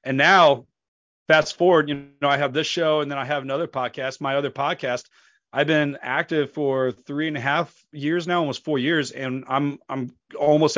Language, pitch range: English, 130-150 Hz